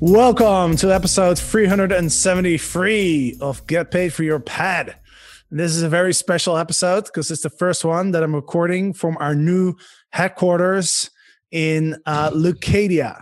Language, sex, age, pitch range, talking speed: English, male, 20-39, 145-180 Hz, 140 wpm